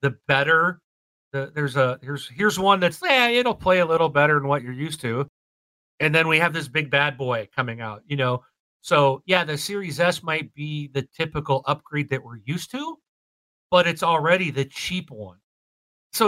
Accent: American